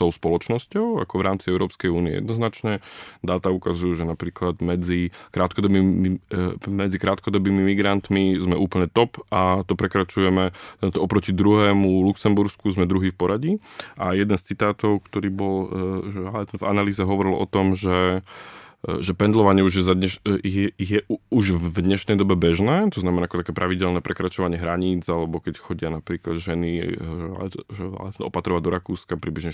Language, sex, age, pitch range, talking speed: Slovak, male, 20-39, 90-105 Hz, 150 wpm